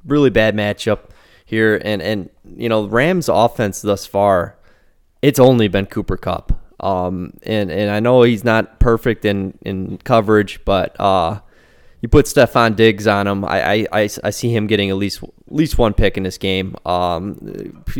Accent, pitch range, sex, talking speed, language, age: American, 95-110 Hz, male, 175 wpm, English, 20-39